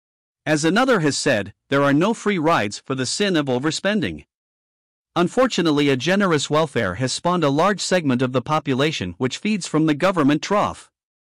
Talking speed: 170 wpm